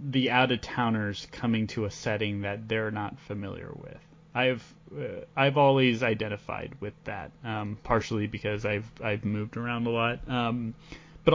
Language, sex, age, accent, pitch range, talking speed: English, male, 30-49, American, 110-135 Hz, 155 wpm